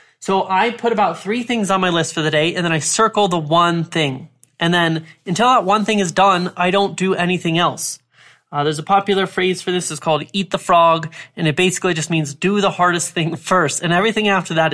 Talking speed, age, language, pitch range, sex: 235 wpm, 20-39, English, 160-195 Hz, male